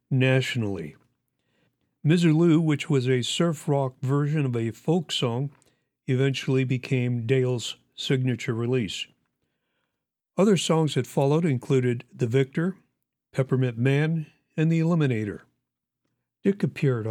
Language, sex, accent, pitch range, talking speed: English, male, American, 120-145 Hz, 110 wpm